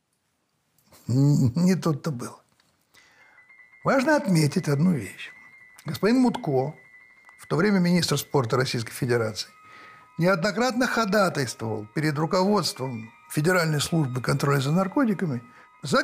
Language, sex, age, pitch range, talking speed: Russian, male, 60-79, 130-205 Hz, 95 wpm